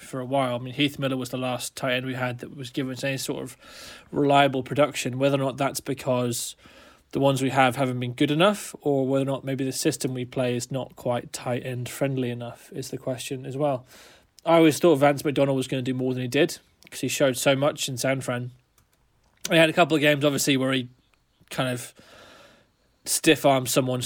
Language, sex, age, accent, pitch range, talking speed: English, male, 20-39, British, 130-145 Hz, 225 wpm